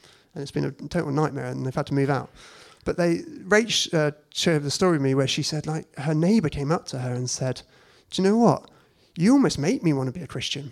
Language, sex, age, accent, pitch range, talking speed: English, male, 30-49, British, 140-180 Hz, 260 wpm